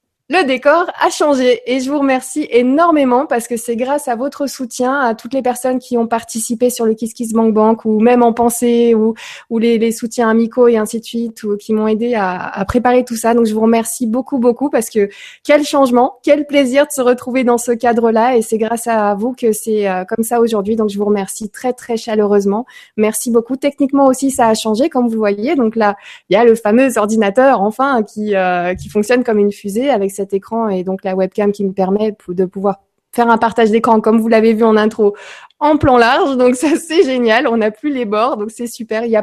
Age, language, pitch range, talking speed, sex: 20-39, French, 215-250 Hz, 235 wpm, female